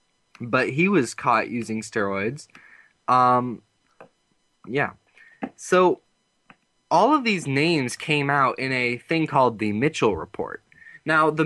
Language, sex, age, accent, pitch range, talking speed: English, male, 20-39, American, 115-145 Hz, 125 wpm